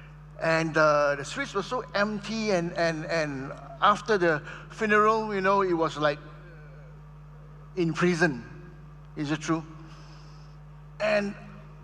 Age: 60-79